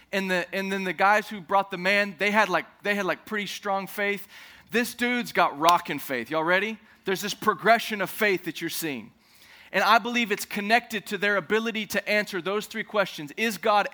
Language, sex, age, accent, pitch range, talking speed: English, male, 30-49, American, 175-215 Hz, 210 wpm